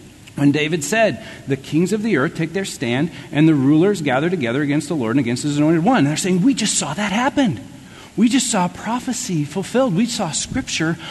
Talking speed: 210 wpm